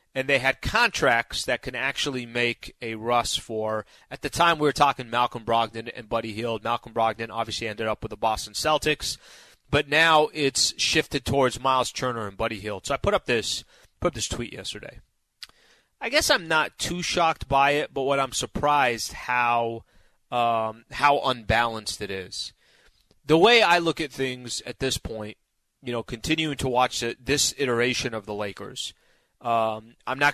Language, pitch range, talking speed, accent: English, 115-140 Hz, 180 wpm, American